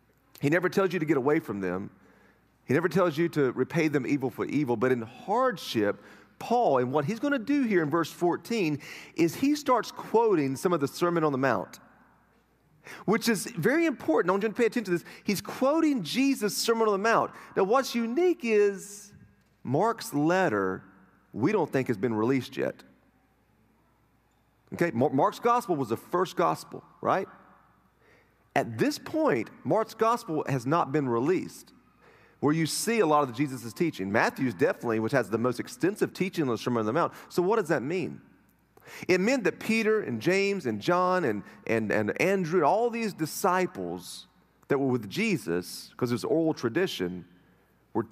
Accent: American